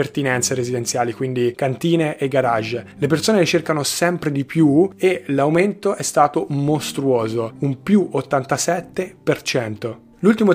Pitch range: 135-165 Hz